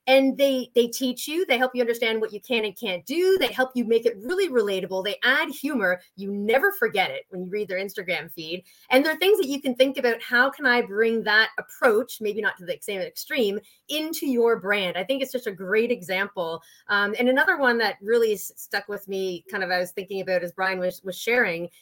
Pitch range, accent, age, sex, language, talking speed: 205-275 Hz, American, 30-49, female, English, 235 wpm